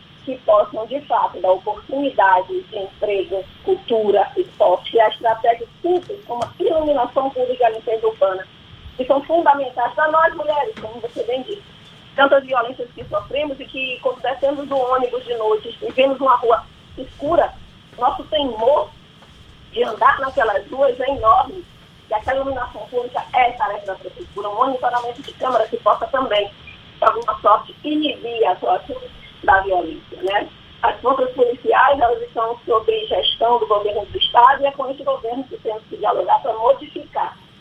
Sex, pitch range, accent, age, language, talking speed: female, 225-315 Hz, Brazilian, 20-39, Portuguese, 165 wpm